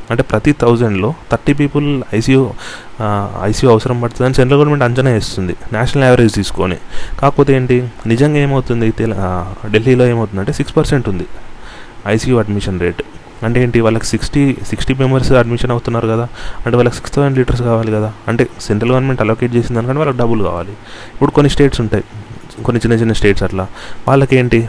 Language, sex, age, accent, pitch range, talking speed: Telugu, male, 30-49, native, 105-130 Hz, 155 wpm